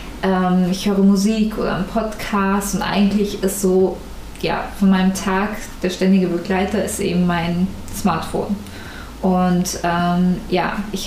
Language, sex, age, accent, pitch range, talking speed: German, female, 20-39, German, 185-215 Hz, 135 wpm